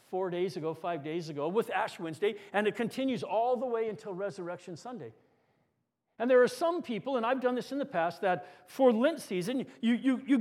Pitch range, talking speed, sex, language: 195-265 Hz, 215 wpm, male, English